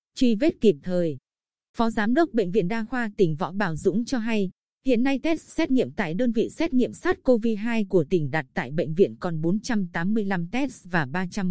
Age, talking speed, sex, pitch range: 20-39, 205 wpm, female, 185-235 Hz